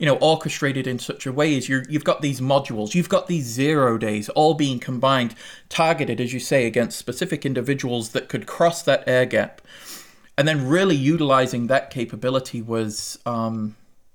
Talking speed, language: 180 wpm, English